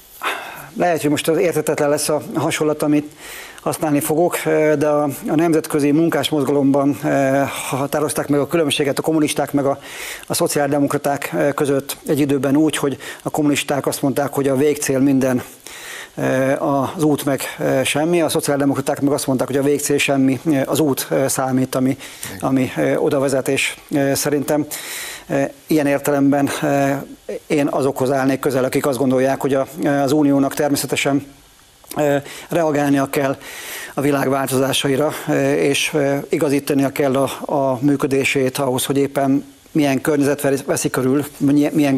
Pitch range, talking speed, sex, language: 135-150 Hz, 130 wpm, male, Hungarian